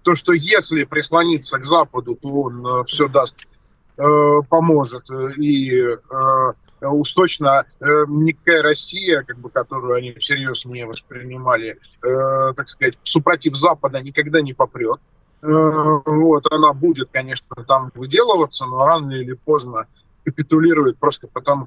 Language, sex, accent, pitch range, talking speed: Russian, male, native, 135-160 Hz, 130 wpm